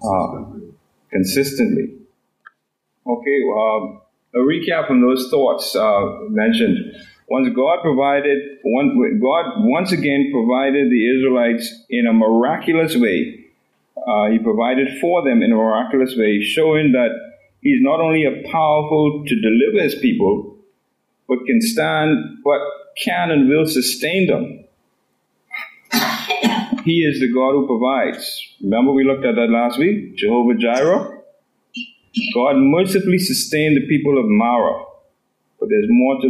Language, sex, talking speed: English, male, 130 wpm